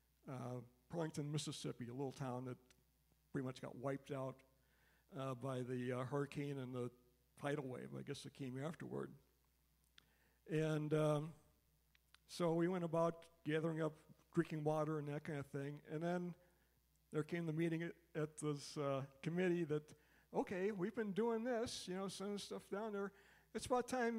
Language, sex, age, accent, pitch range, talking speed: English, male, 50-69, American, 140-180 Hz, 165 wpm